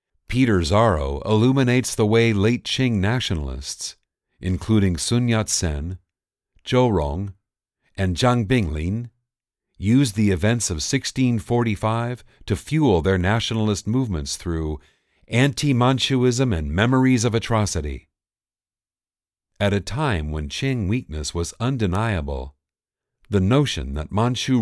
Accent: American